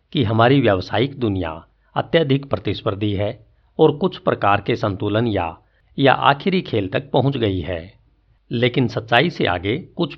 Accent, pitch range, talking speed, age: native, 100-130 Hz, 145 wpm, 50-69